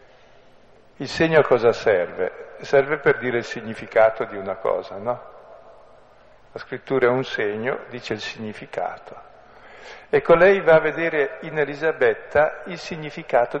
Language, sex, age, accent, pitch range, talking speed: Italian, male, 50-69, native, 115-160 Hz, 135 wpm